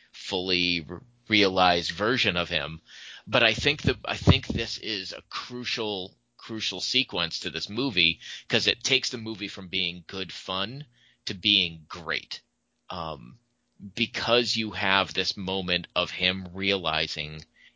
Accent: American